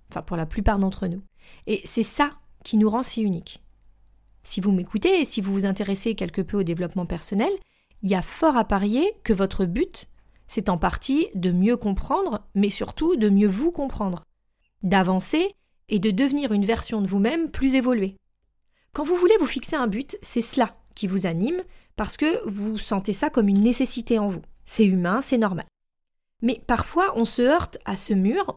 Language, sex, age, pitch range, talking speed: French, female, 30-49, 195-265 Hz, 195 wpm